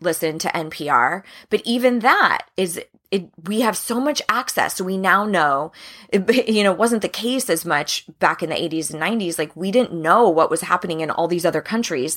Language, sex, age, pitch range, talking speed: English, female, 20-39, 165-215 Hz, 210 wpm